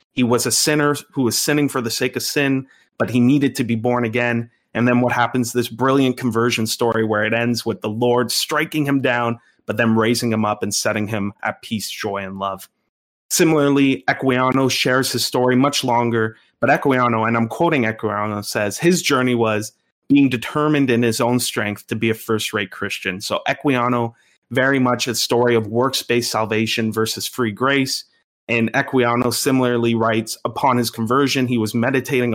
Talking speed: 185 wpm